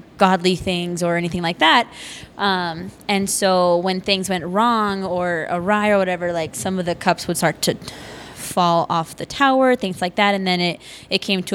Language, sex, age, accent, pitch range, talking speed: English, female, 20-39, American, 170-195 Hz, 195 wpm